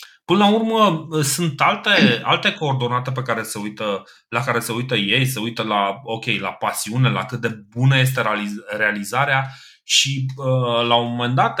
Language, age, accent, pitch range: Romanian, 30-49, native, 115-165 Hz